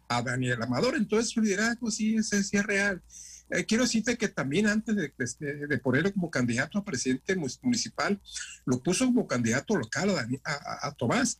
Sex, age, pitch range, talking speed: male, 50-69, 125-195 Hz, 200 wpm